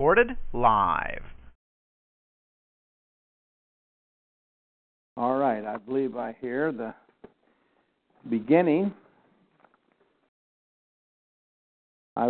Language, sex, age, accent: English, male, 60-79, American